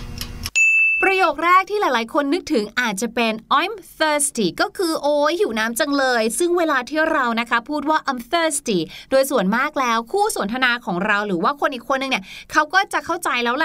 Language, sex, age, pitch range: Thai, female, 20-39, 220-320 Hz